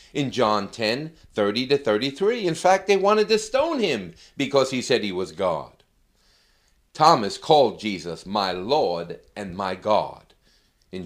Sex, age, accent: male, 50-69, American